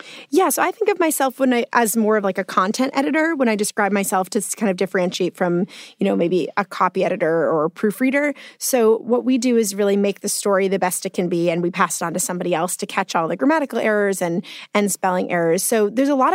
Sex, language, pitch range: female, English, 185-230 Hz